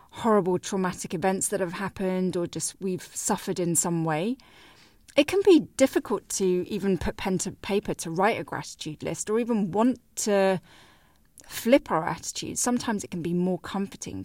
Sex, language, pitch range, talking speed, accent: female, English, 165-210 Hz, 175 wpm, British